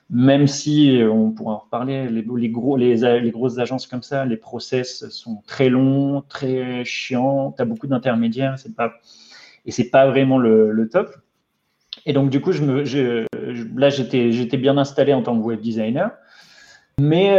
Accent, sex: French, male